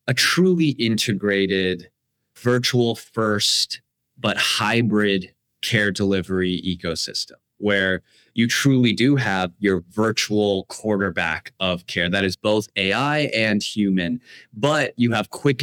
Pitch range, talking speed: 95-120 Hz, 115 wpm